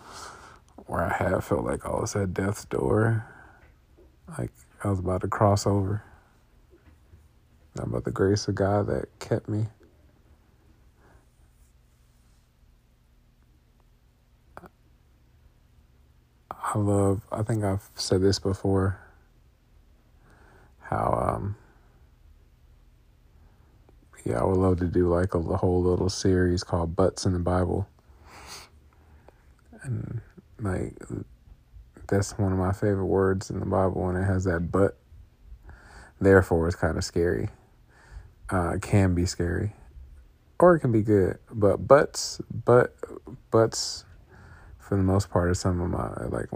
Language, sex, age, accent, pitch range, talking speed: English, male, 40-59, American, 80-100 Hz, 125 wpm